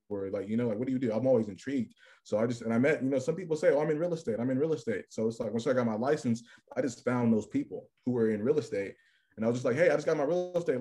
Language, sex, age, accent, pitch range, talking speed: English, male, 20-39, American, 115-130 Hz, 340 wpm